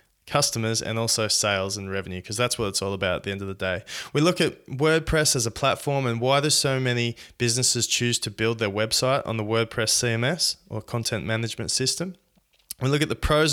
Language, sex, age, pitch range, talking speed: English, male, 20-39, 110-145 Hz, 215 wpm